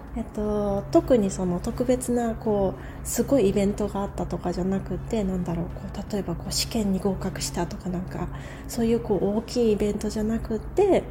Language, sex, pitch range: Japanese, female, 185-230 Hz